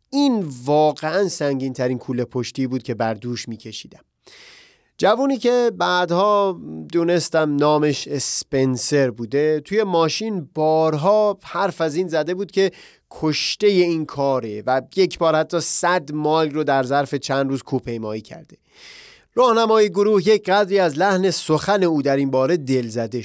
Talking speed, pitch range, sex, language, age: 145 wpm, 135-190 Hz, male, Persian, 30-49